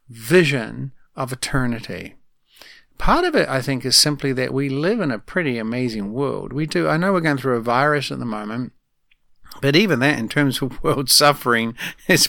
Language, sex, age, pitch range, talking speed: English, male, 50-69, 130-165 Hz, 190 wpm